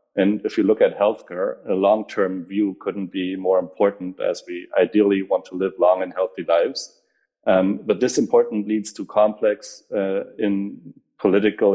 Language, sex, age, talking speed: English, male, 30-49, 170 wpm